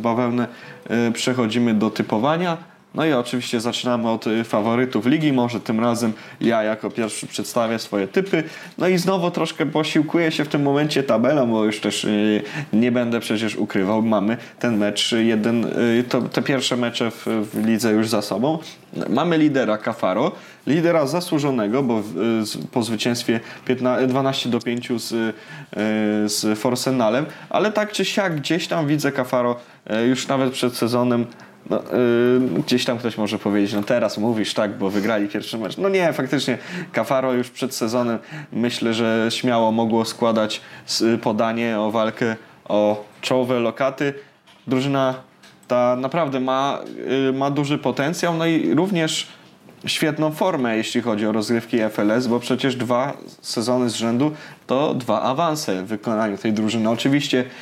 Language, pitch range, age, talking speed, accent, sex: Polish, 115-140 Hz, 20-39, 150 wpm, native, male